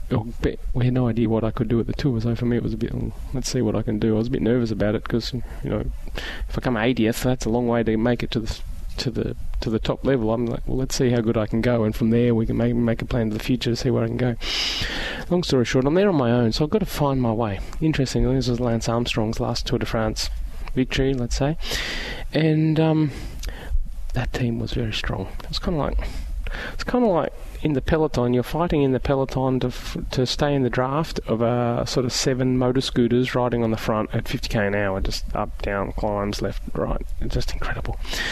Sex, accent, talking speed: male, Australian, 255 wpm